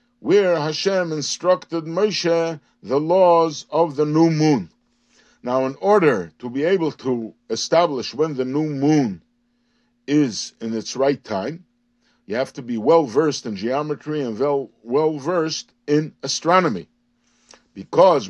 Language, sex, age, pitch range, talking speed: English, male, 60-79, 135-185 Hz, 130 wpm